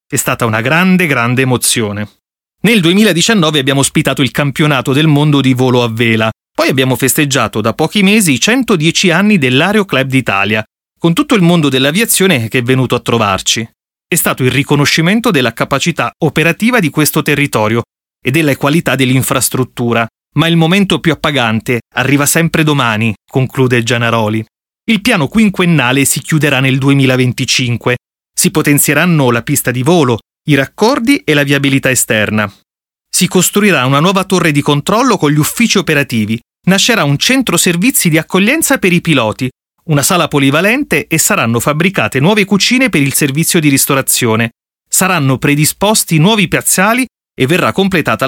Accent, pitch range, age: native, 125-180 Hz, 30-49